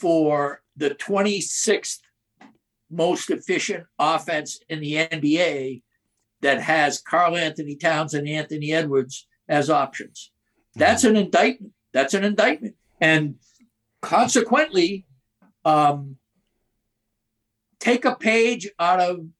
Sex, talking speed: male, 100 wpm